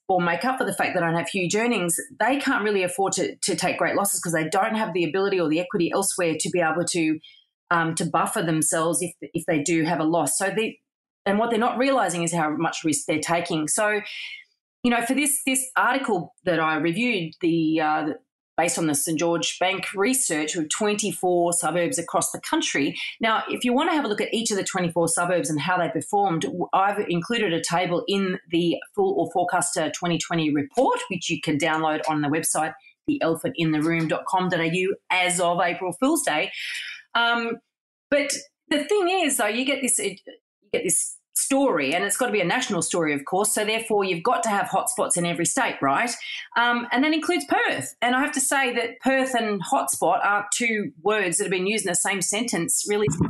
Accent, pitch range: Australian, 170-240 Hz